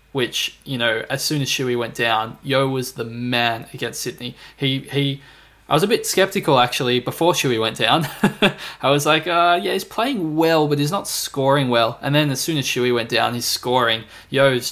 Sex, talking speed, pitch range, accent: male, 210 wpm, 120-140 Hz, Australian